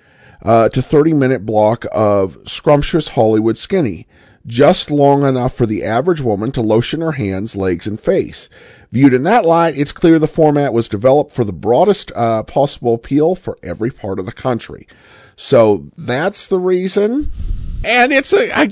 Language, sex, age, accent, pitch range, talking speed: English, male, 50-69, American, 115-175 Hz, 165 wpm